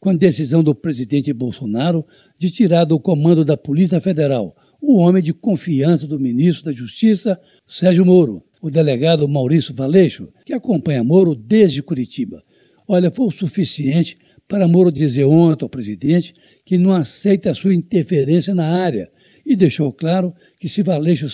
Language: Portuguese